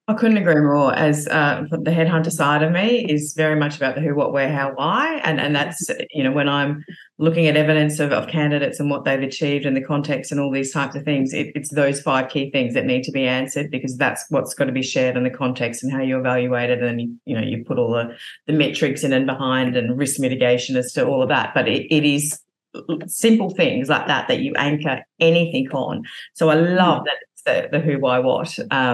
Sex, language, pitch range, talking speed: female, English, 130-155 Hz, 240 wpm